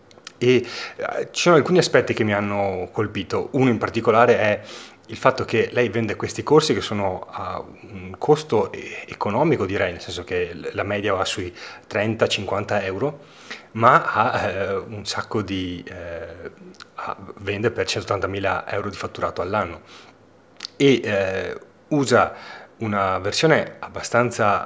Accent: native